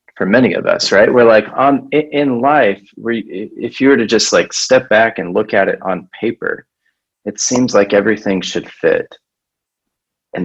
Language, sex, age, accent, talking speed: English, male, 30-49, American, 185 wpm